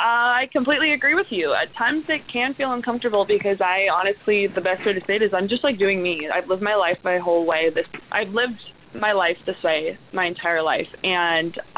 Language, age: English, 20-39